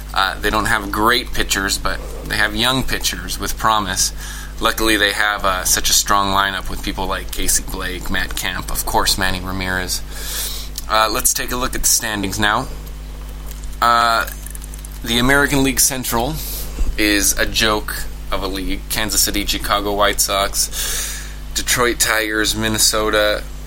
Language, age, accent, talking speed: English, 20-39, American, 150 wpm